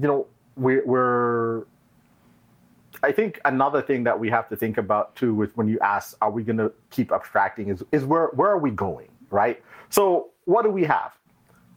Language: English